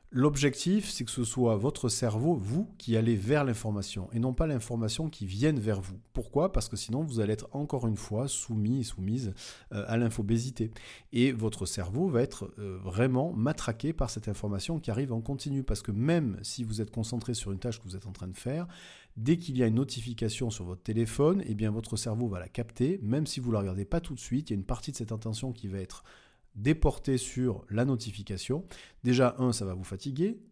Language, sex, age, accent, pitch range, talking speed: French, male, 40-59, French, 110-140 Hz, 220 wpm